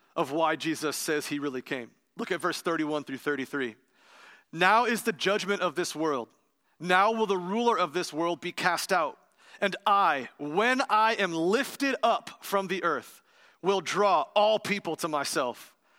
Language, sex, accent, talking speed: English, male, American, 175 wpm